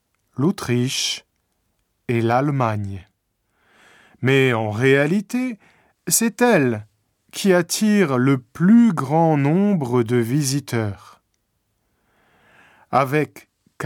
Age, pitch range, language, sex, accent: 40-59, 115-180 Hz, Japanese, male, French